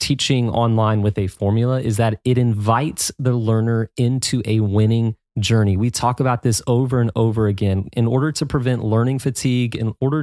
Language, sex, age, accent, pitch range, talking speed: English, male, 30-49, American, 110-135 Hz, 180 wpm